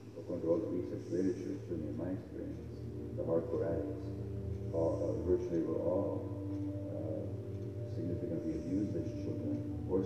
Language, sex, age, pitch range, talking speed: English, male, 50-69, 95-115 Hz, 135 wpm